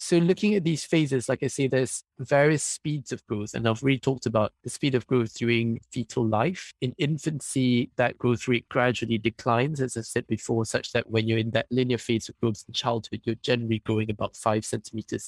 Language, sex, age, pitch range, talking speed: English, male, 20-39, 110-125 Hz, 210 wpm